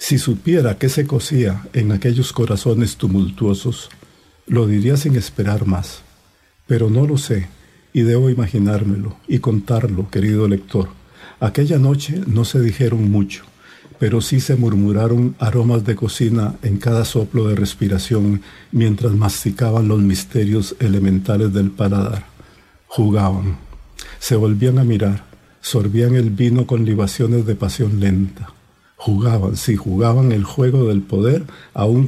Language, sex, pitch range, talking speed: English, male, 100-125 Hz, 135 wpm